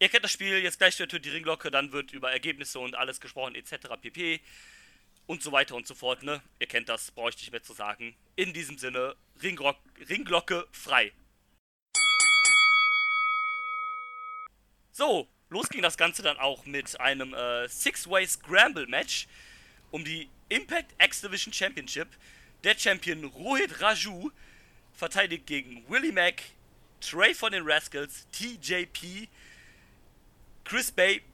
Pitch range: 140-205 Hz